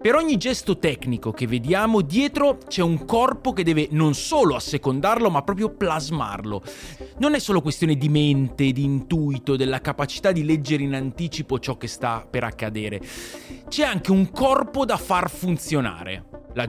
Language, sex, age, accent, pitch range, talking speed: Italian, male, 30-49, native, 130-180 Hz, 160 wpm